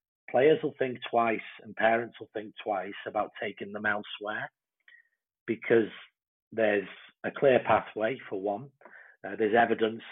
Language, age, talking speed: English, 40-59, 135 wpm